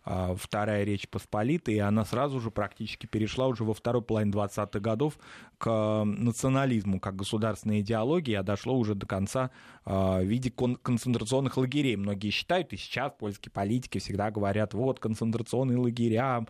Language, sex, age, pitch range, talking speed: Russian, male, 20-39, 105-130 Hz, 145 wpm